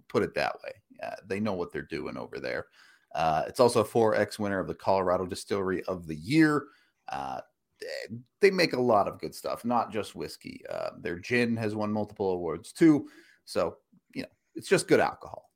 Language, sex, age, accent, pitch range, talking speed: English, male, 30-49, American, 90-130 Hz, 195 wpm